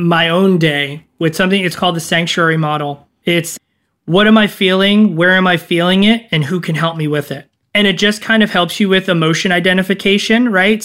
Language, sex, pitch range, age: English, male, 165-205 Hz, 20-39